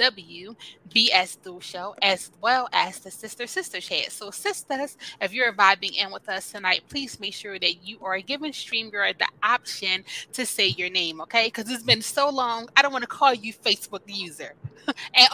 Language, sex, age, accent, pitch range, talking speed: English, female, 20-39, American, 190-245 Hz, 195 wpm